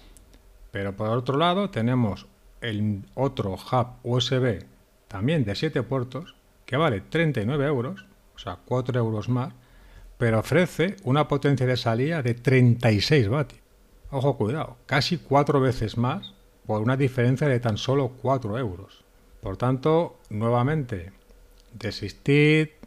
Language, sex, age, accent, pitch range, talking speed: Spanish, male, 40-59, Spanish, 105-135 Hz, 130 wpm